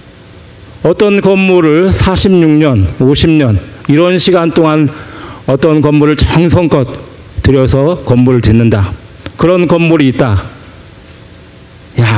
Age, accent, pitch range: 40-59, native, 110-170 Hz